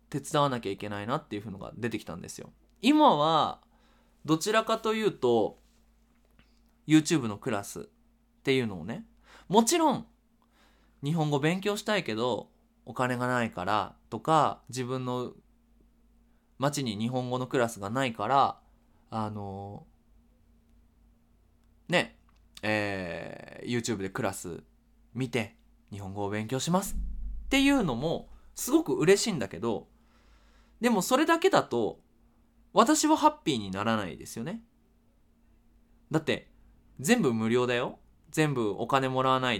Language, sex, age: Japanese, male, 20-39